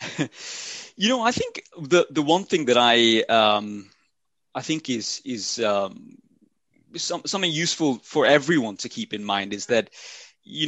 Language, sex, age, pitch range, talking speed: English, male, 30-49, 105-140 Hz, 155 wpm